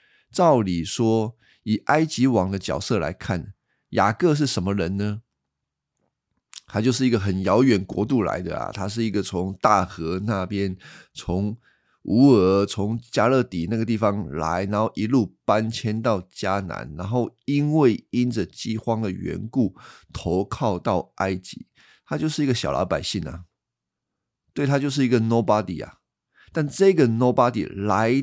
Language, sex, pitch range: Chinese, male, 95-125 Hz